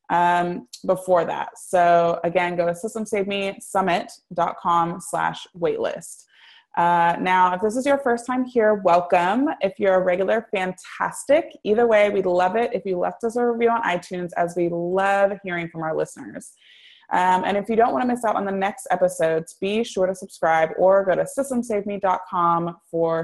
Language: English